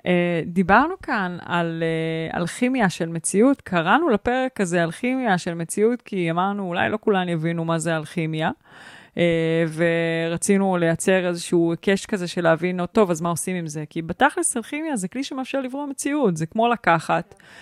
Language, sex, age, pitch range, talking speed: Hebrew, female, 20-39, 175-220 Hz, 165 wpm